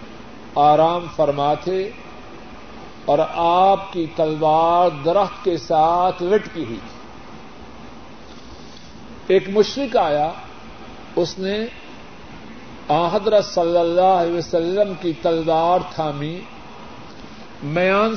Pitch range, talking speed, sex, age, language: 170-225 Hz, 85 wpm, male, 50-69, Urdu